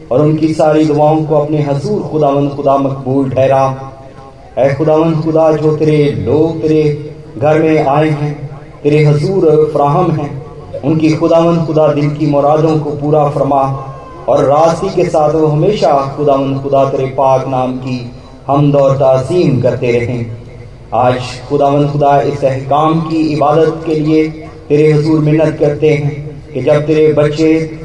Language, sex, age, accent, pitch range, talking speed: Hindi, male, 30-49, native, 140-155 Hz, 90 wpm